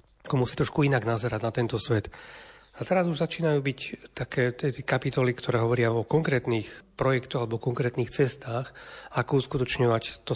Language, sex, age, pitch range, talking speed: Slovak, male, 40-59, 120-140 Hz, 145 wpm